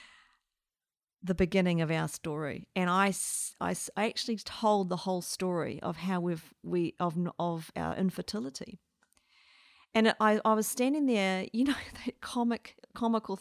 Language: English